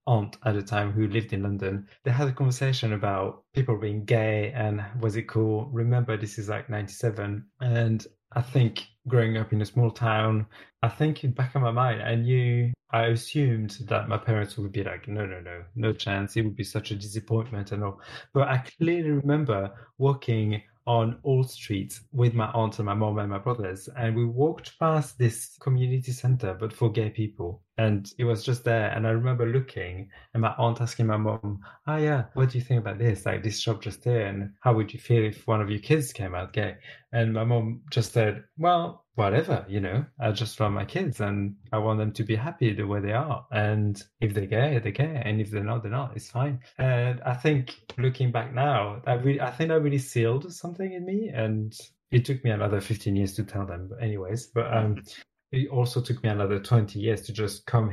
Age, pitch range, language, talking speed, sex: 20-39, 105-125 Hz, English, 220 wpm, male